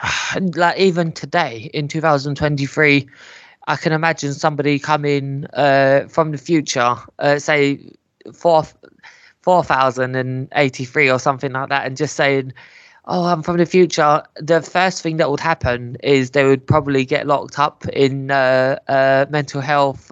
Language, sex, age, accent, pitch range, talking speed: English, male, 20-39, British, 135-160 Hz, 165 wpm